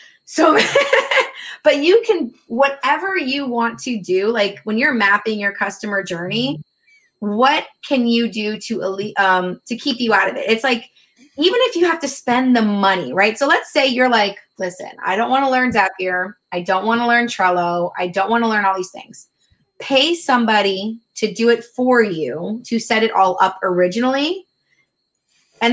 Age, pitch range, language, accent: 20-39, 195-250 Hz, English, American